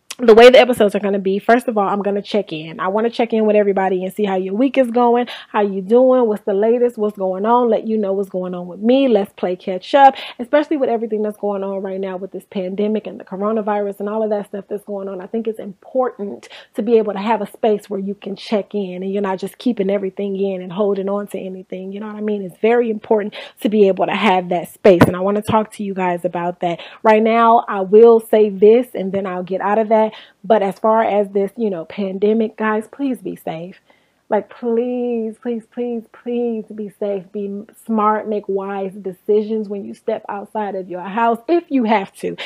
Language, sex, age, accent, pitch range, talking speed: English, female, 30-49, American, 200-235 Hz, 245 wpm